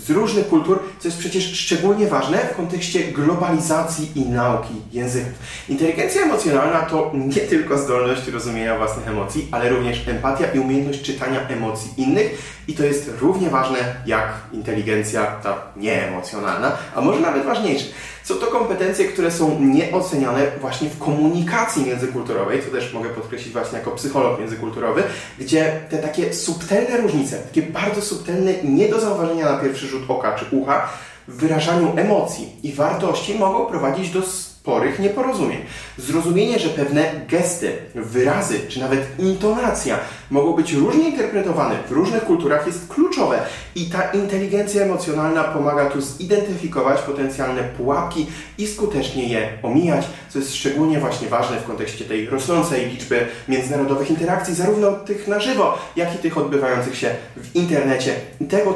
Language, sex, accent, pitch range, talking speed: Polish, male, native, 130-175 Hz, 150 wpm